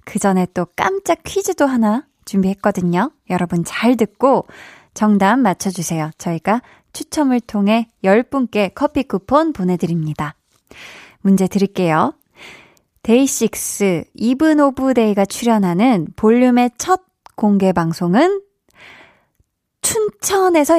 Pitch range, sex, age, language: 190-270 Hz, female, 20-39, Korean